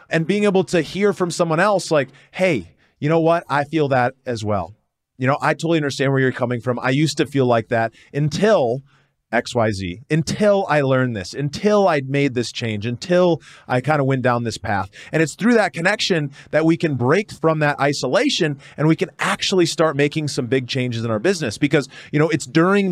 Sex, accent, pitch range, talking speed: male, American, 130-170 Hz, 210 wpm